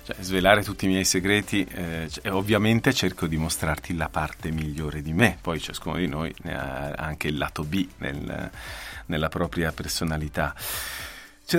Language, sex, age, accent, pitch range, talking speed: Italian, male, 40-59, native, 80-95 Hz, 165 wpm